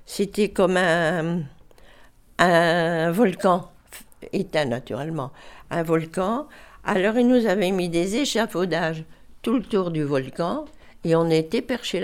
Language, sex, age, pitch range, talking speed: French, female, 60-79, 145-175 Hz, 125 wpm